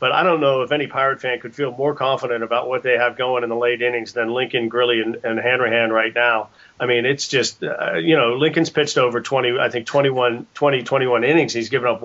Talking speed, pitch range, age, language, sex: 240 wpm, 120-145 Hz, 40-59, English, male